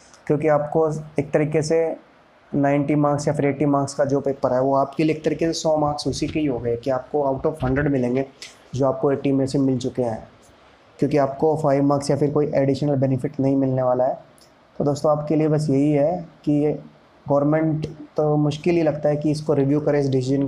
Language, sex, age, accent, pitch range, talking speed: Hindi, male, 20-39, native, 135-150 Hz, 220 wpm